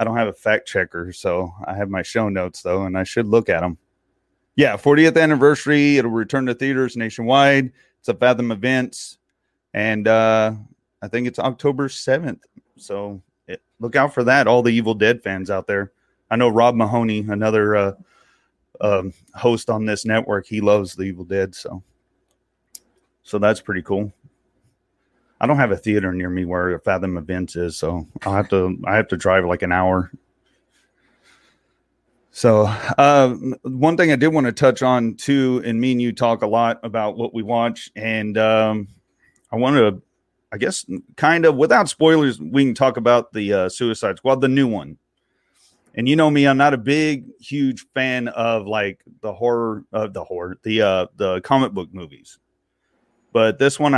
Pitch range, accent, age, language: 100-130 Hz, American, 30-49, English